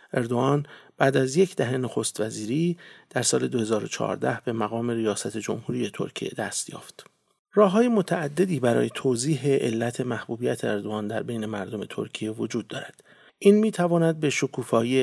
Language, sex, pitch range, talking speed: English, male, 120-155 Hz, 140 wpm